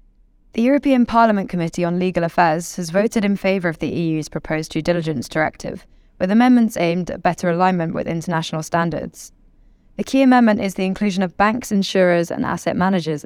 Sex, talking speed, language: female, 175 wpm, English